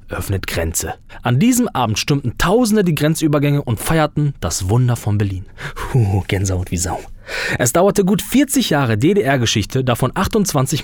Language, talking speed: German, 150 wpm